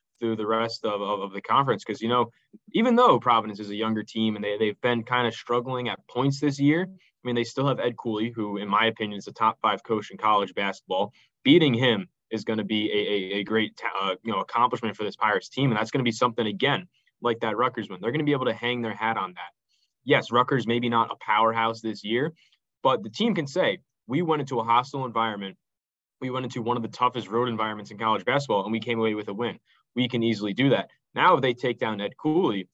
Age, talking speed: 20-39, 255 wpm